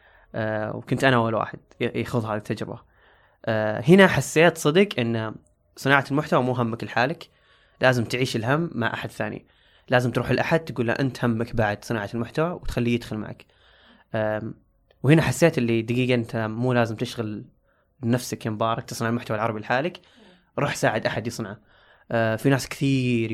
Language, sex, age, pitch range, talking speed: Arabic, male, 20-39, 115-140 Hz, 155 wpm